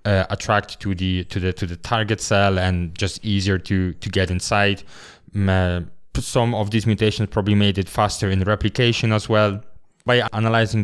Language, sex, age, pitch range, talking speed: English, male, 20-39, 100-115 Hz, 185 wpm